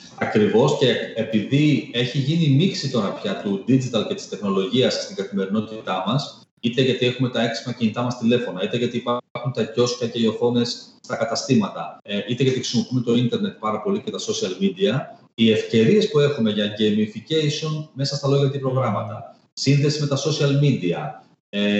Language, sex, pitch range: Greek, male, 115-155 Hz